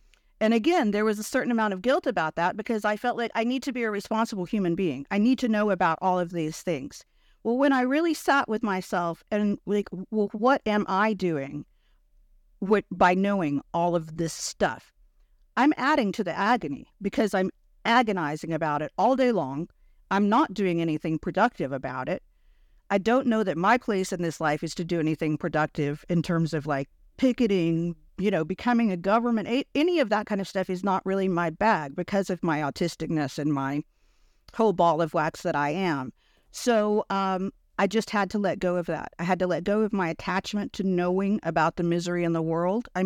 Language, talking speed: English, 205 wpm